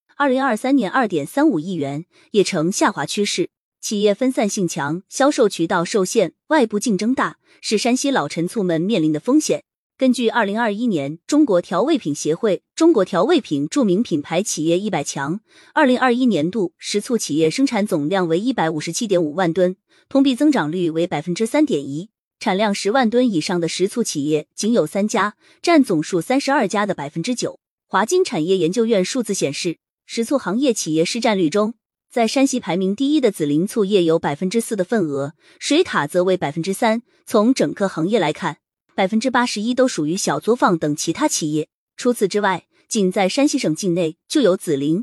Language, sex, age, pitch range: Chinese, female, 20-39, 170-245 Hz